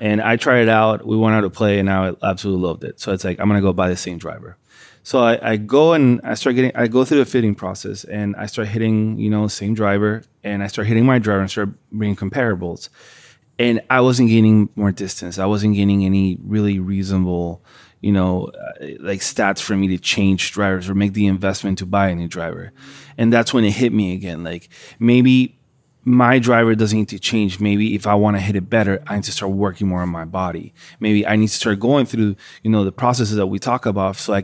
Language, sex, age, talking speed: English, male, 30-49, 240 wpm